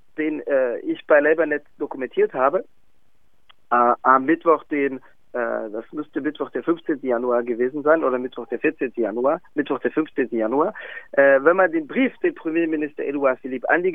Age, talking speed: 40-59, 170 wpm